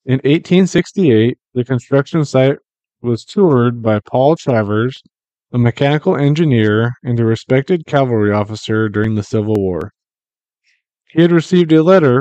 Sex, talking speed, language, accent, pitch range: male, 135 wpm, English, American, 110-140 Hz